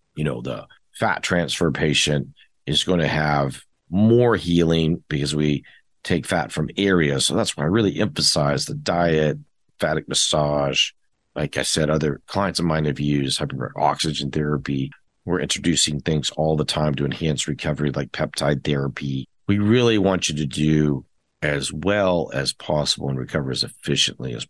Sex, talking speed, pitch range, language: male, 160 wpm, 75-90 Hz, English